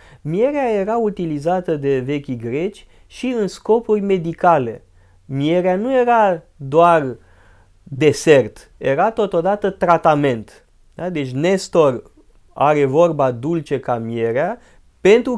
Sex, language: male, Romanian